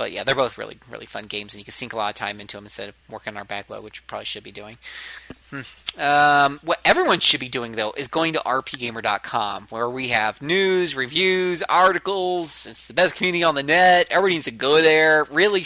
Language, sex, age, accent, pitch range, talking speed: English, male, 30-49, American, 115-160 Hz, 235 wpm